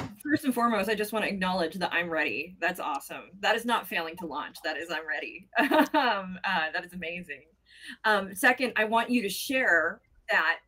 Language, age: English, 30-49